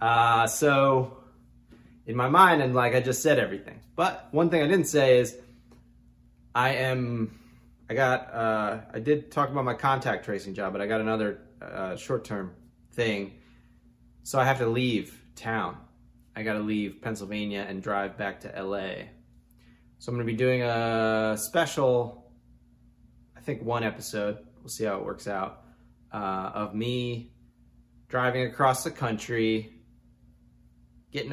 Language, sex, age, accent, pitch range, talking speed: English, male, 20-39, American, 75-120 Hz, 155 wpm